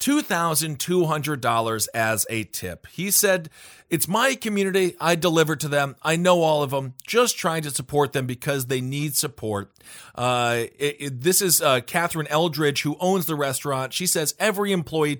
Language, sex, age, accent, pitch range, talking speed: English, male, 40-59, American, 135-195 Hz, 160 wpm